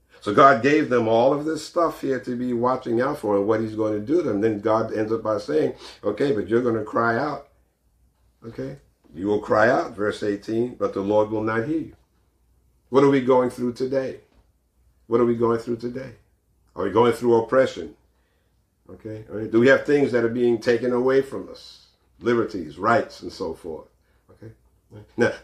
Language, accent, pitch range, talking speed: English, American, 105-125 Hz, 200 wpm